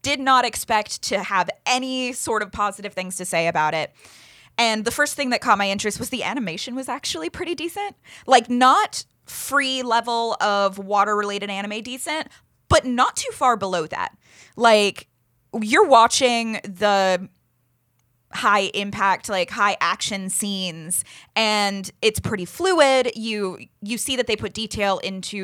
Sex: female